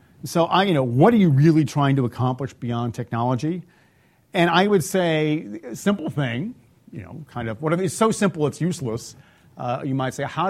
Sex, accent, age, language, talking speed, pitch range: male, American, 40-59, English, 200 wpm, 120-155 Hz